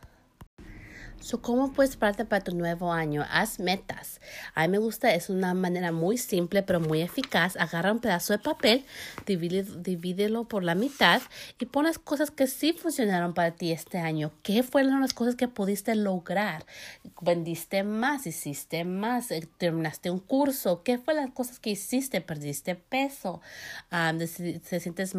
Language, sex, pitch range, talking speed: English, female, 175-235 Hz, 155 wpm